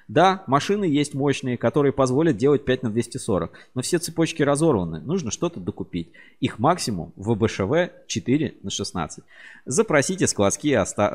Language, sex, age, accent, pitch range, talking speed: Russian, male, 20-39, native, 105-150 Hz, 145 wpm